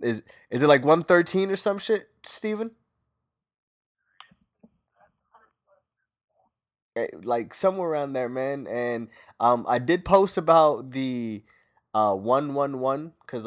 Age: 20-39